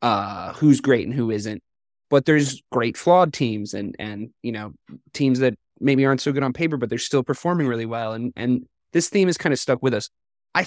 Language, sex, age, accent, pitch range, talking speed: English, male, 20-39, American, 120-160 Hz, 225 wpm